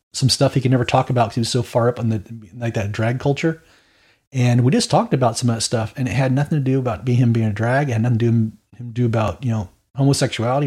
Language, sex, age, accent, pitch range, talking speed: English, male, 30-49, American, 115-145 Hz, 285 wpm